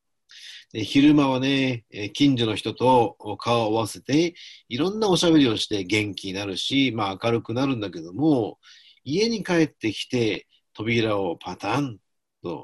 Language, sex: Japanese, male